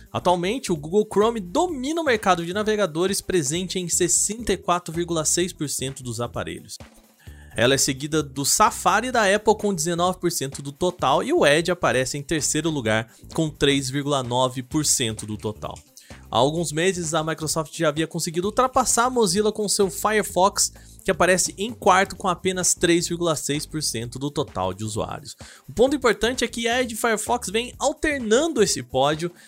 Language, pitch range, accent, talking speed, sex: Portuguese, 140-205 Hz, Brazilian, 150 wpm, male